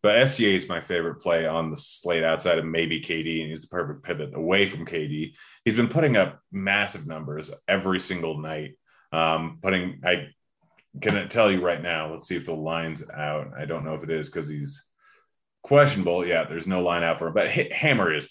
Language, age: English, 30-49